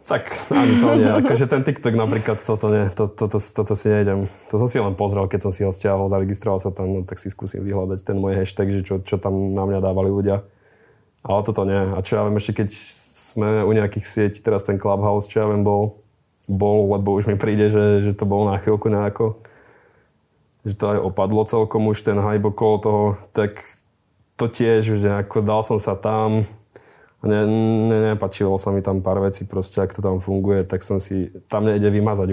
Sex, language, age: male, Czech, 20-39